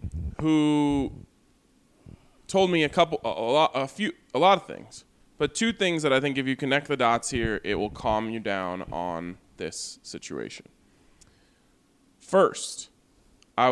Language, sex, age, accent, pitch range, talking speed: English, male, 20-39, American, 115-145 Hz, 160 wpm